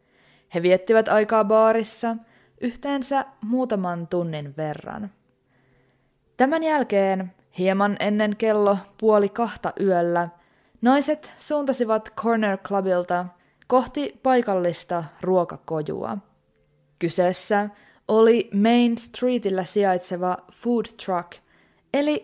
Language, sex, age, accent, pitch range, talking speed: Finnish, female, 20-39, native, 180-230 Hz, 85 wpm